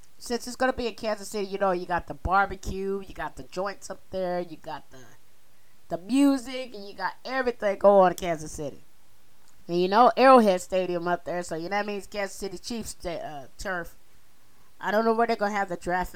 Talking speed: 230 wpm